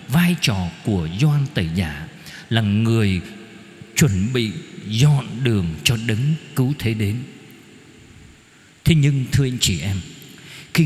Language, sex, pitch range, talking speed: Vietnamese, male, 120-185 Hz, 135 wpm